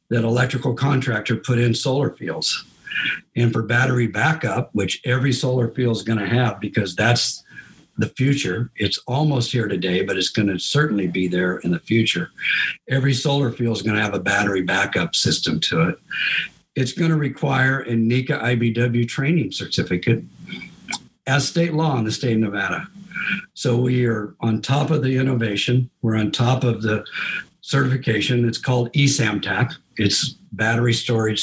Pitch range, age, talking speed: 110-130 Hz, 50-69, 165 wpm